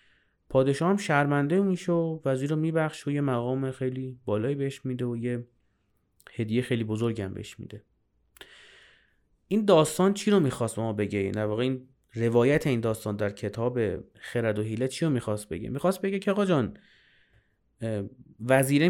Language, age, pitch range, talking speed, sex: Persian, 30-49, 120-160 Hz, 155 wpm, male